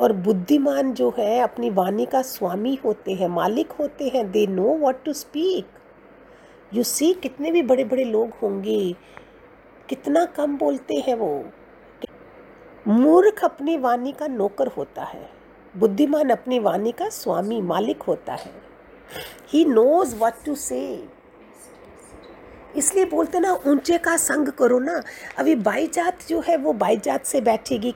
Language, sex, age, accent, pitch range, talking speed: Hindi, female, 50-69, native, 215-290 Hz, 150 wpm